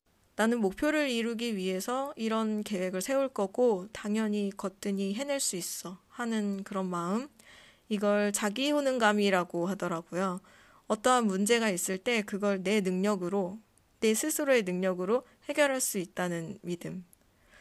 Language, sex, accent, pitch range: Korean, female, native, 190-250 Hz